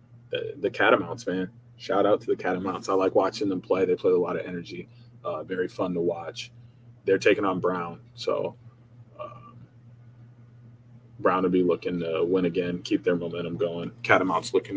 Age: 20-39